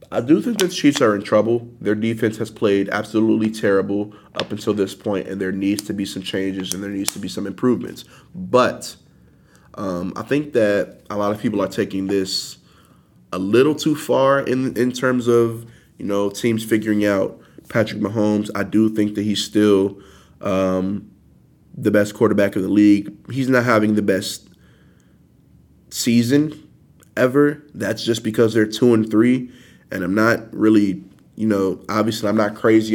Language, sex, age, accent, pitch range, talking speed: English, male, 20-39, American, 95-110 Hz, 175 wpm